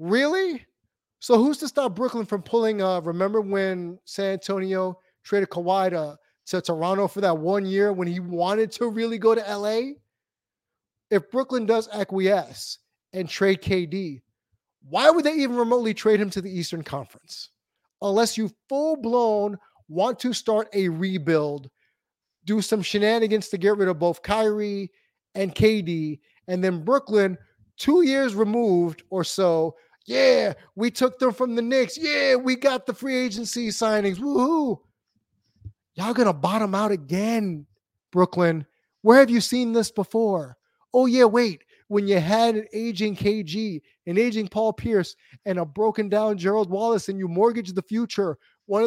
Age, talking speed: 30-49, 155 wpm